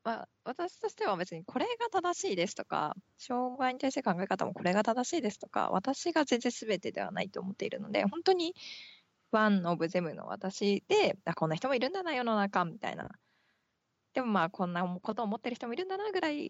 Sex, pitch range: female, 180-255 Hz